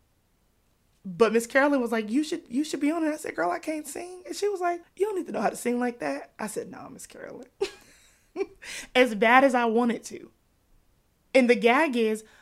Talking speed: 225 wpm